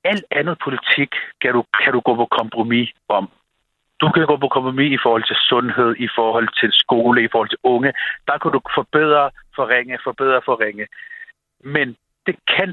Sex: male